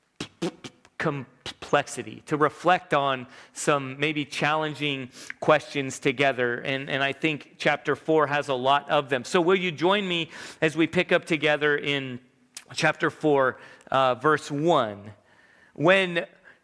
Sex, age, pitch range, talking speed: male, 40-59, 130-165 Hz, 135 wpm